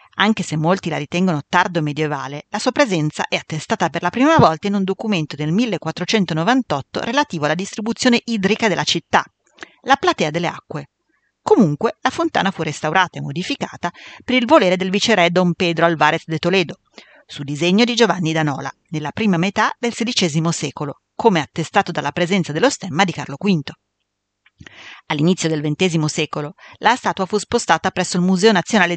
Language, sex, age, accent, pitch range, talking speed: Italian, female, 40-59, native, 155-215 Hz, 170 wpm